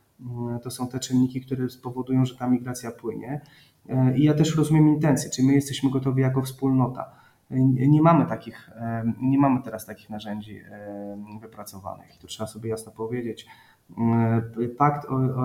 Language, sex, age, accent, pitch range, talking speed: Polish, male, 20-39, native, 120-135 Hz, 150 wpm